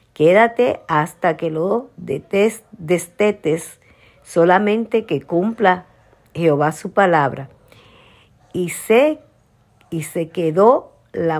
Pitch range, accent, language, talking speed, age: 150-205 Hz, American, Spanish, 90 wpm, 50-69